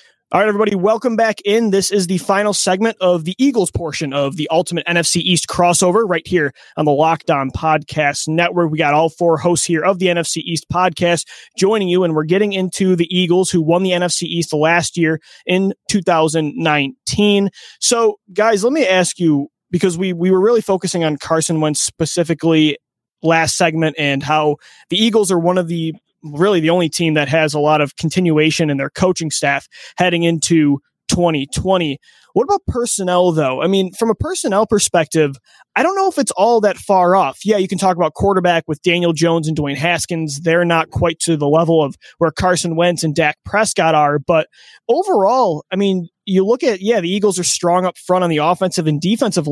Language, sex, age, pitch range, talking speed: English, male, 20-39, 160-195 Hz, 200 wpm